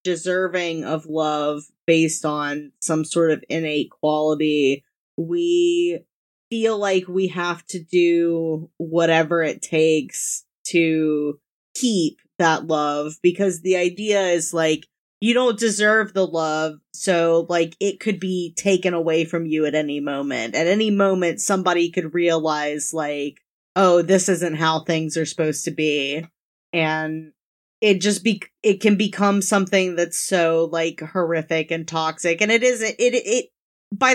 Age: 20-39